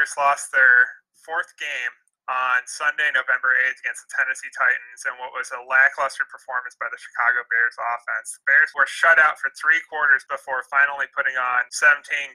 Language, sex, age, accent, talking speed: English, male, 20-39, American, 175 wpm